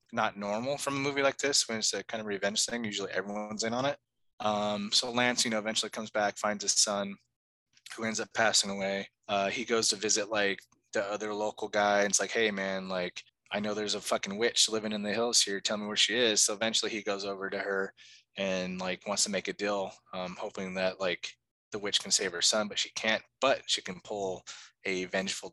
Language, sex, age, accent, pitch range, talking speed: English, male, 20-39, American, 100-120 Hz, 235 wpm